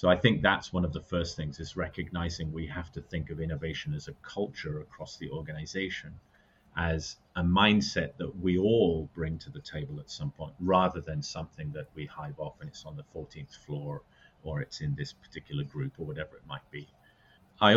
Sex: male